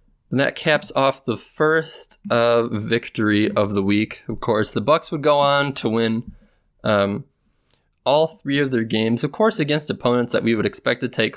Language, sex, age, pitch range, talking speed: English, male, 20-39, 105-135 Hz, 190 wpm